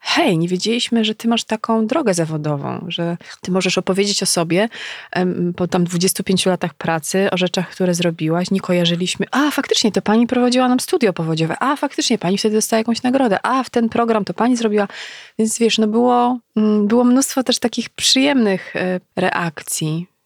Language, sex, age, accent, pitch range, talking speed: Polish, female, 20-39, native, 175-215 Hz, 170 wpm